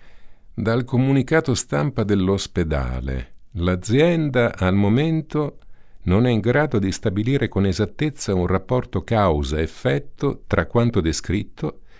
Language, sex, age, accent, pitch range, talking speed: Italian, male, 50-69, native, 85-120 Hz, 105 wpm